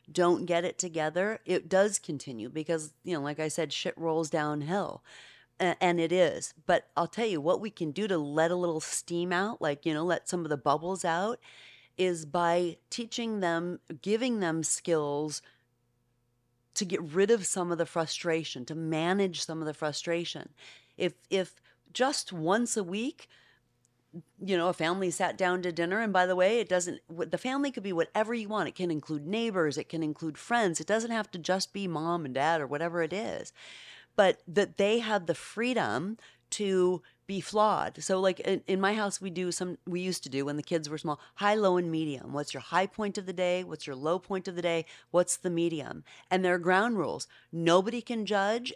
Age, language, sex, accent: 40-59, English, female, American